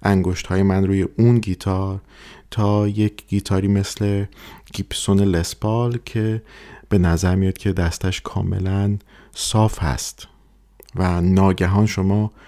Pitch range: 90-105 Hz